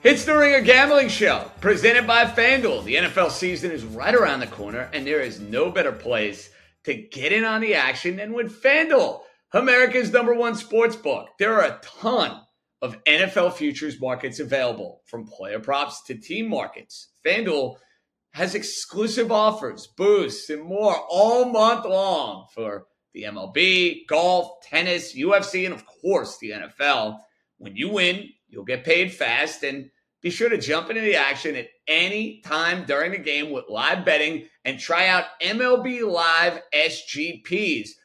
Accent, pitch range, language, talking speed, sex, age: American, 155-225 Hz, English, 160 wpm, male, 40-59